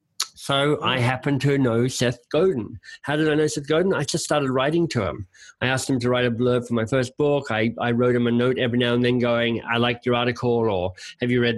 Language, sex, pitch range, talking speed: English, male, 120-145 Hz, 255 wpm